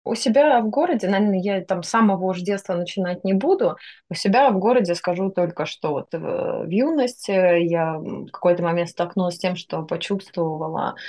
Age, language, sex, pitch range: 20-39, Russian, female, 160-195 Hz